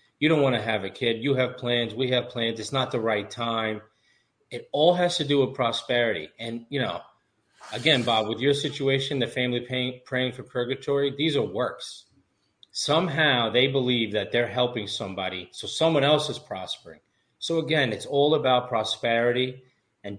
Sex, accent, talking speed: male, American, 180 wpm